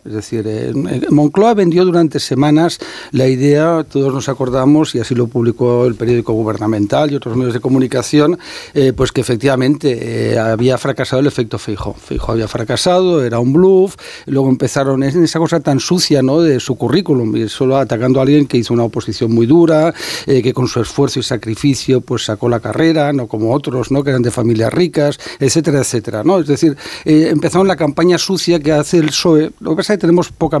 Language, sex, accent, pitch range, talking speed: Spanish, male, Spanish, 120-155 Hz, 195 wpm